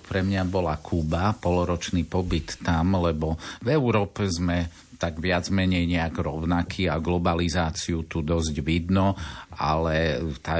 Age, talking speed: 50-69, 130 wpm